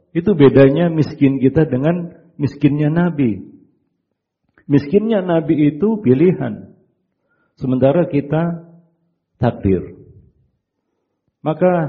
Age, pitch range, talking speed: 50-69, 130-155 Hz, 75 wpm